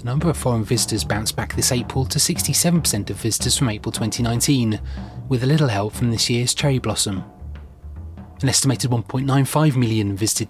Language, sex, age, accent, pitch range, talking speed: English, male, 30-49, British, 110-135 Hz, 170 wpm